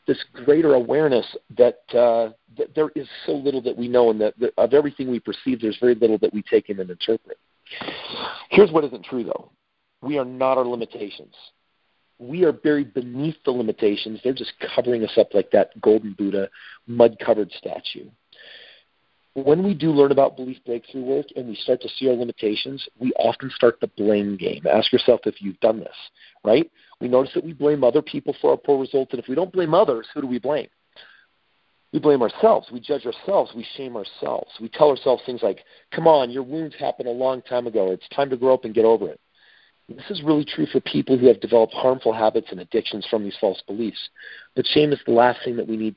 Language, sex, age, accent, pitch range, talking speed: English, male, 40-59, American, 115-145 Hz, 215 wpm